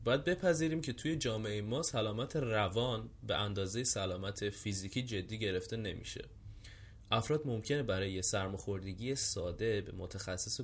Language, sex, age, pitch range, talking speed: Persian, male, 20-39, 100-130 Hz, 130 wpm